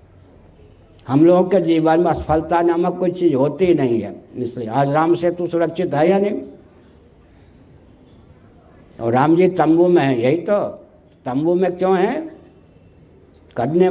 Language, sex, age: Hindi, male, 60-79